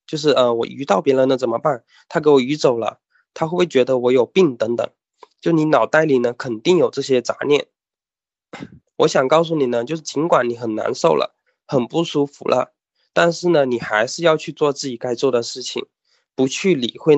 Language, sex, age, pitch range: Chinese, male, 20-39, 125-160 Hz